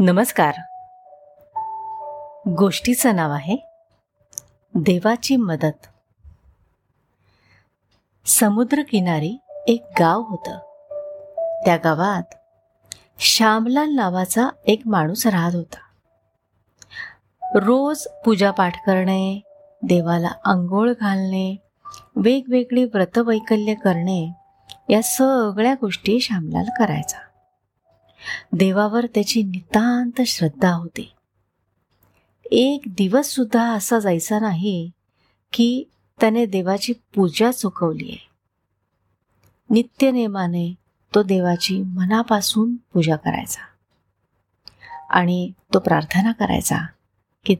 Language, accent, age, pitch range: Marathi, native, 30-49, 170-240 Hz